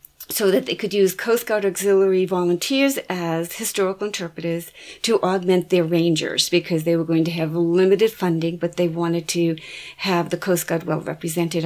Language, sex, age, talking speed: English, female, 50-69, 170 wpm